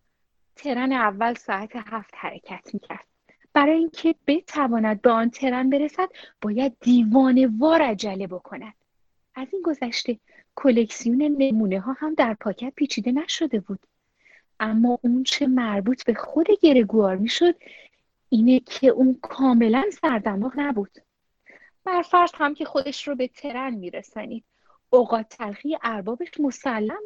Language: Persian